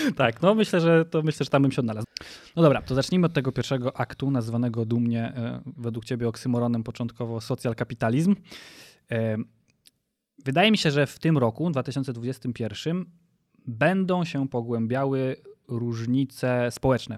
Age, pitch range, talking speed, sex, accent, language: 20-39, 125-145 Hz, 135 wpm, male, native, Polish